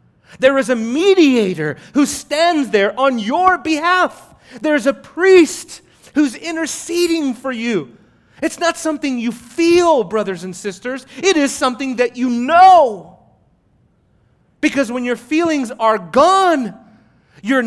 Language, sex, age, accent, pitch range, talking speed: English, male, 30-49, American, 205-310 Hz, 130 wpm